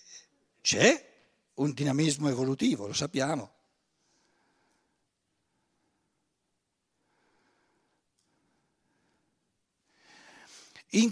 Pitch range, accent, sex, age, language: 150-225 Hz, native, male, 60-79, Italian